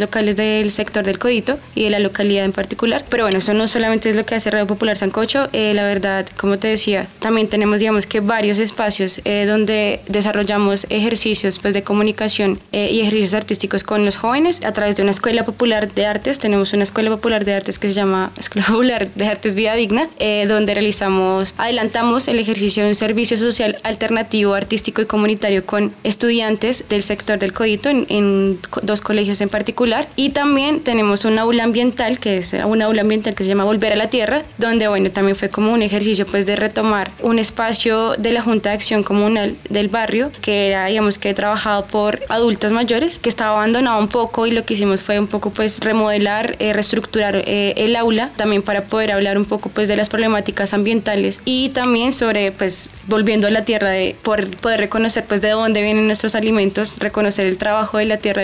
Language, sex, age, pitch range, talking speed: Spanish, female, 20-39, 205-225 Hz, 205 wpm